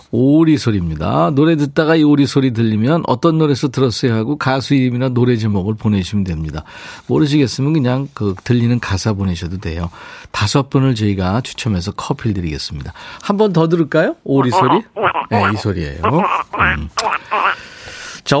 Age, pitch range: 40-59, 105-160 Hz